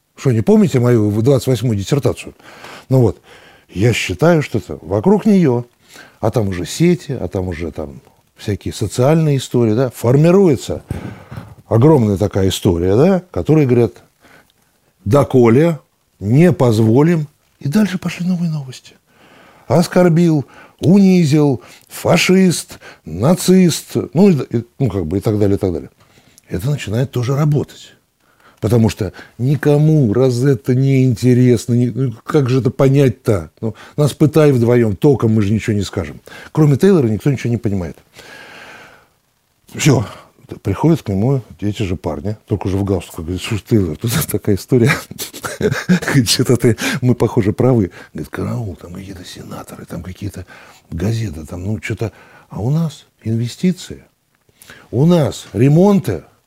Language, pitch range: Russian, 105-150 Hz